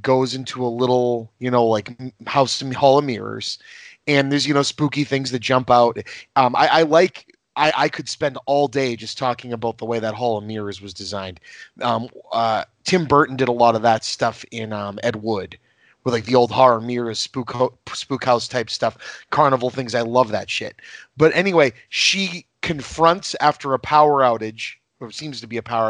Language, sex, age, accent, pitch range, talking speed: English, male, 30-49, American, 115-135 Hz, 205 wpm